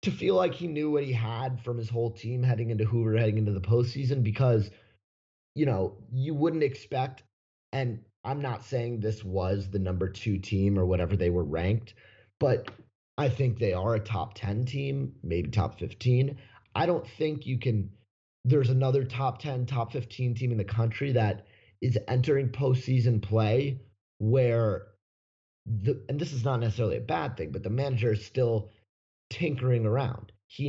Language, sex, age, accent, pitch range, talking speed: English, male, 30-49, American, 105-125 Hz, 175 wpm